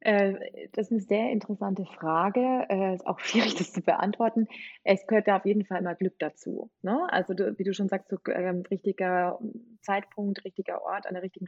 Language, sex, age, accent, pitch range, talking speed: German, female, 20-39, German, 175-210 Hz, 190 wpm